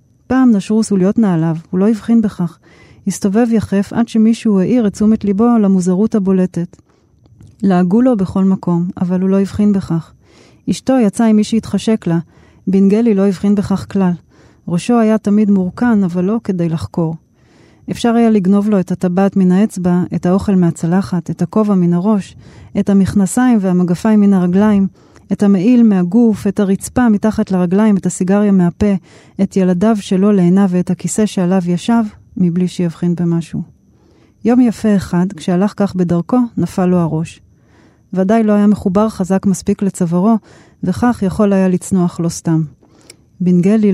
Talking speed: 150 wpm